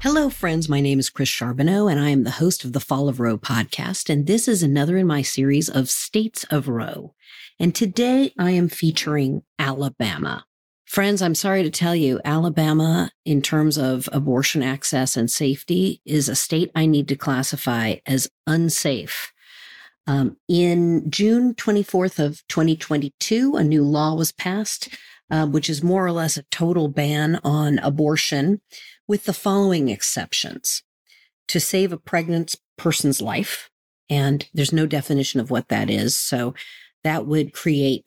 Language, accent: English, American